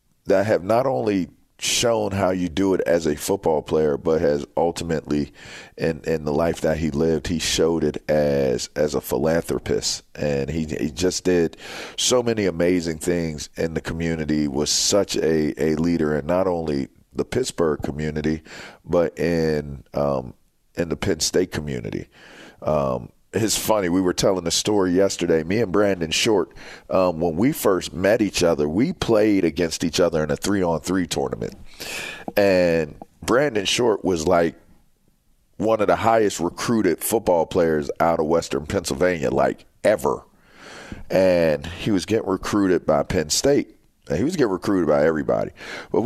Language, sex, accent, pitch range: English, male, American, 75-95 Hz